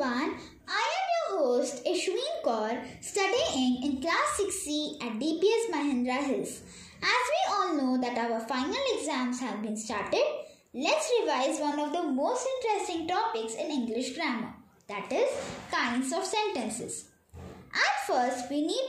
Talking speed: 145 wpm